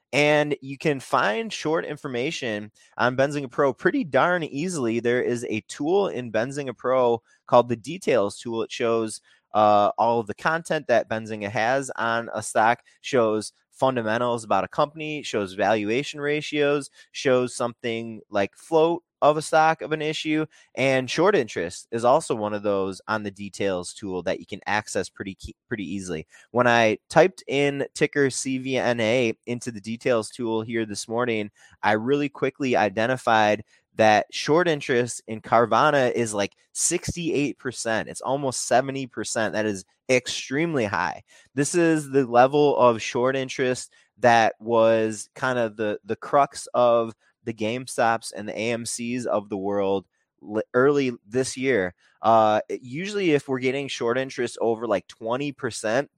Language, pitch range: English, 110-135 Hz